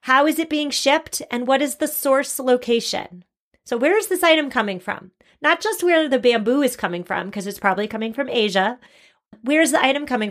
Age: 30-49